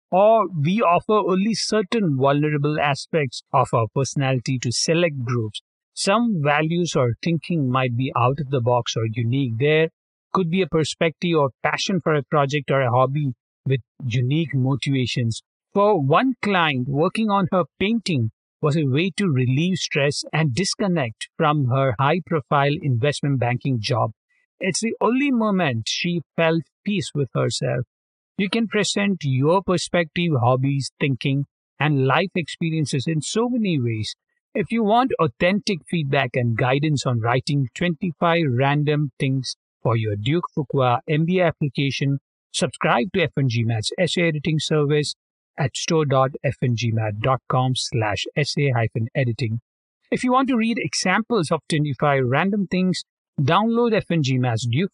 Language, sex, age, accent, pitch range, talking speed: English, male, 50-69, Indian, 130-175 Hz, 140 wpm